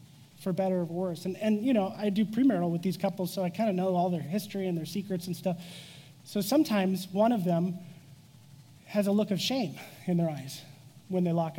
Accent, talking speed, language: American, 225 wpm, English